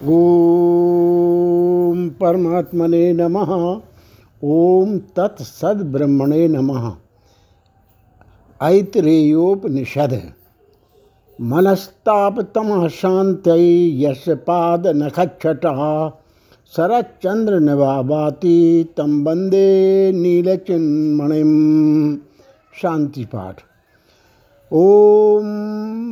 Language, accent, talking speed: Hindi, native, 40 wpm